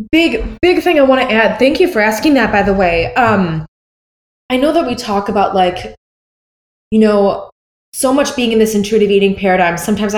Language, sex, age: English, female, 20-39